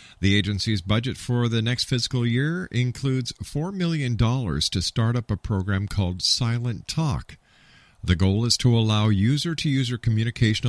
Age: 50-69